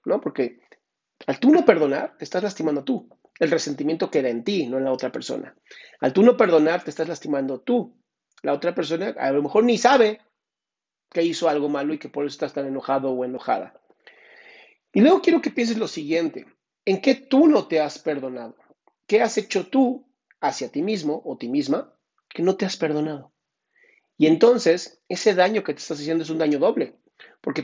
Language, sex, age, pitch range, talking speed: Spanish, male, 40-59, 145-200 Hz, 195 wpm